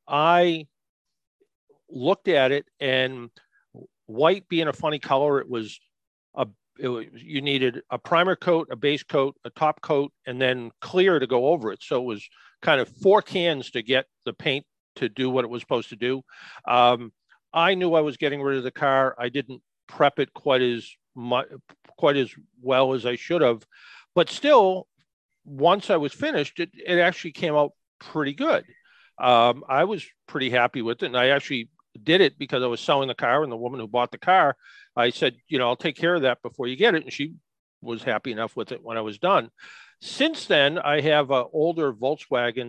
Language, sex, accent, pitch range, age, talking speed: English, male, American, 120-155 Hz, 50-69, 205 wpm